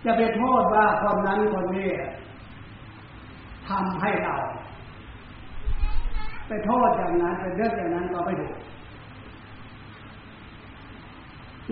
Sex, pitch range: male, 145-210 Hz